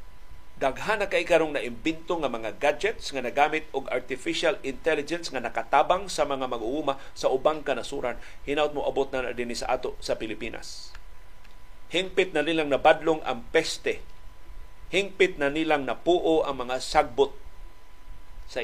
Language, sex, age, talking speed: Filipino, male, 50-69, 140 wpm